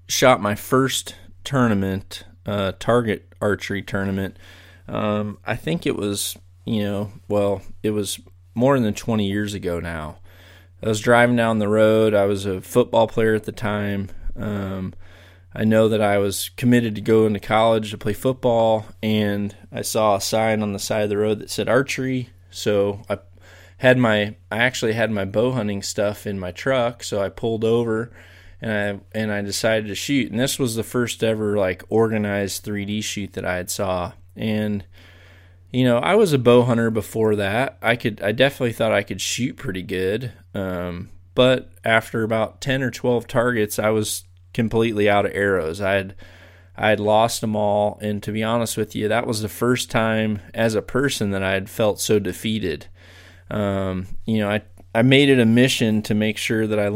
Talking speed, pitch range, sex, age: 190 wpm, 95-115 Hz, male, 20-39